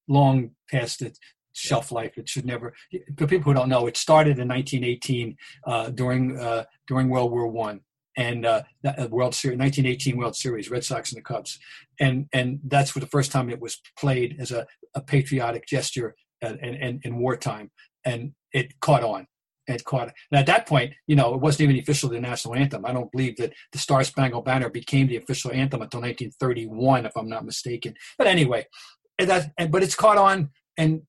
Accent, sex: American, male